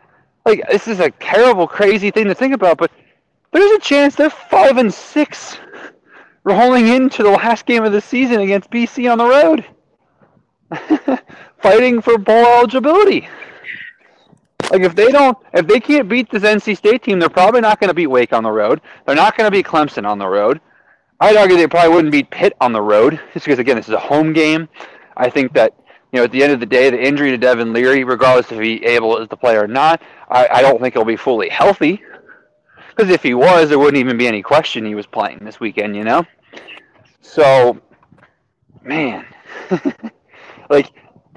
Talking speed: 200 wpm